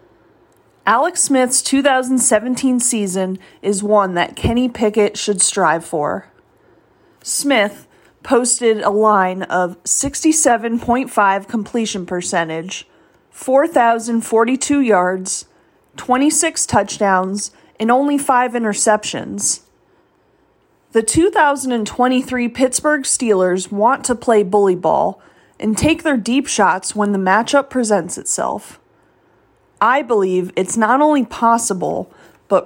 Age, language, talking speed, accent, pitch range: 30-49, English, 100 wpm, American, 200-260 Hz